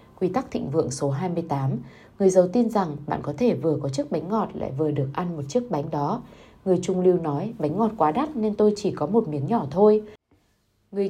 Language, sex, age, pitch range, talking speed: Vietnamese, female, 20-39, 150-200 Hz, 230 wpm